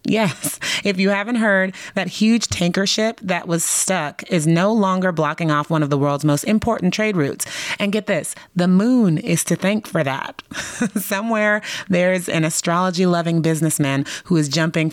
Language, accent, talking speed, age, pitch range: English, American, 180 wpm, 30-49, 155-190 Hz